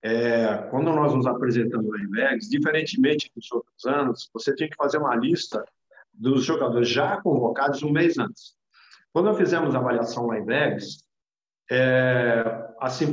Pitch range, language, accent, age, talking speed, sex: 125-190 Hz, Portuguese, Brazilian, 50-69, 150 wpm, male